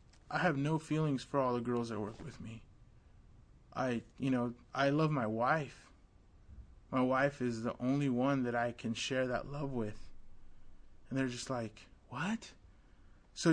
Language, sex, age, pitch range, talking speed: English, male, 20-39, 115-150 Hz, 170 wpm